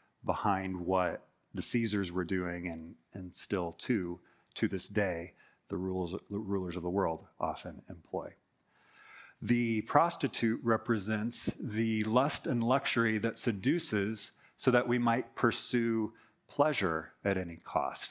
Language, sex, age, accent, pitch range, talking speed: English, male, 40-59, American, 100-120 Hz, 130 wpm